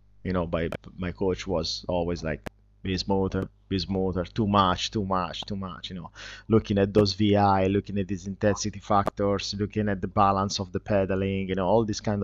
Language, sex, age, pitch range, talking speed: English, male, 30-49, 95-105 Hz, 200 wpm